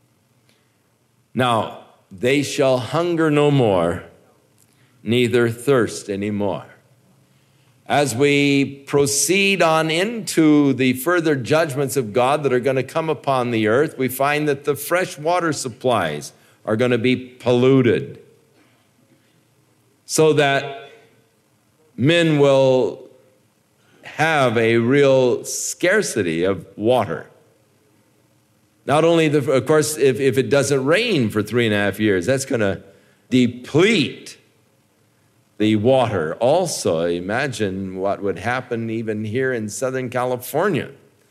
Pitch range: 110-145 Hz